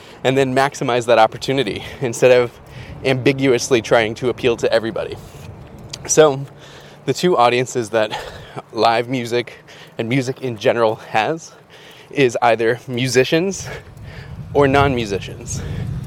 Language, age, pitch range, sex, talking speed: English, 20-39, 120-140 Hz, male, 110 wpm